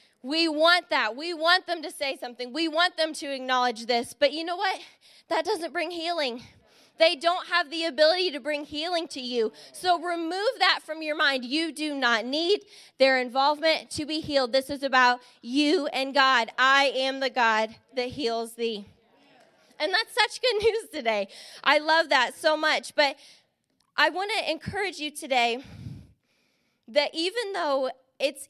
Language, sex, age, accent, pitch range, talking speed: English, female, 20-39, American, 245-320 Hz, 175 wpm